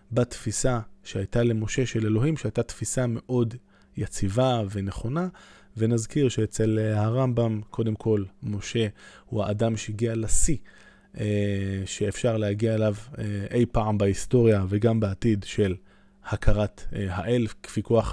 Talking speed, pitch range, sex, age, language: 105 wpm, 105-120 Hz, male, 20-39, Hebrew